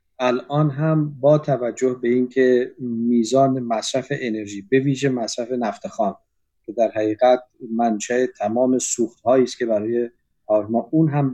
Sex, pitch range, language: male, 120-145 Hz, Persian